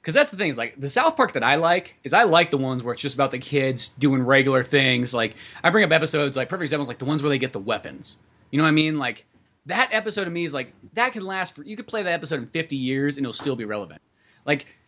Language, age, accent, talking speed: English, 30-49, American, 290 wpm